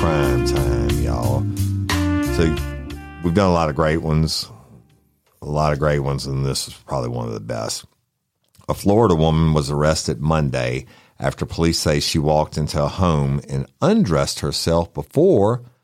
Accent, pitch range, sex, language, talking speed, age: American, 80-120 Hz, male, English, 160 wpm, 50-69